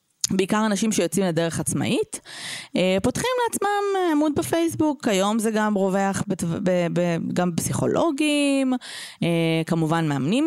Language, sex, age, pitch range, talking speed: Hebrew, female, 20-39, 170-255 Hz, 95 wpm